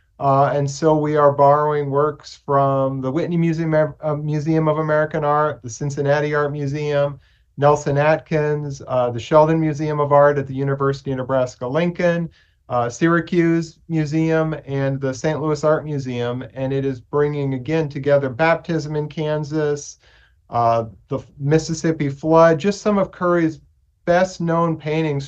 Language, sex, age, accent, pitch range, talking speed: English, male, 40-59, American, 140-165 Hz, 145 wpm